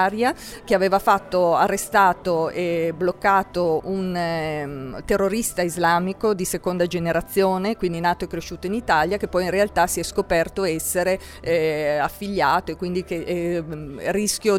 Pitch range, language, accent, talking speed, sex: 175-210 Hz, Italian, native, 140 wpm, female